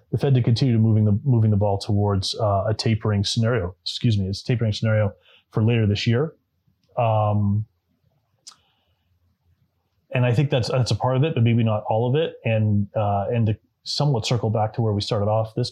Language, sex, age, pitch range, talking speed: English, male, 30-49, 100-120 Hz, 200 wpm